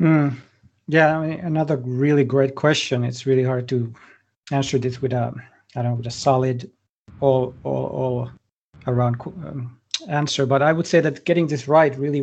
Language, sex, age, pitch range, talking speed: English, male, 40-59, 125-145 Hz, 180 wpm